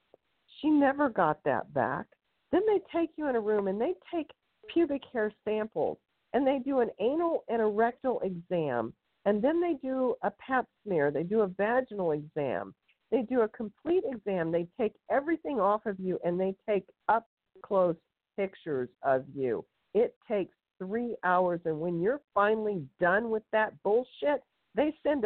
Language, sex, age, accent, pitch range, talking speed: English, female, 50-69, American, 160-235 Hz, 170 wpm